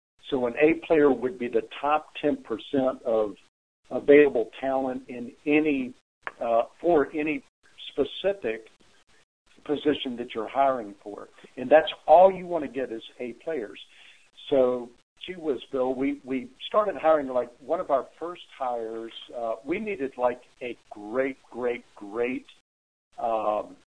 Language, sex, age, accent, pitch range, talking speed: English, male, 60-79, American, 125-160 Hz, 140 wpm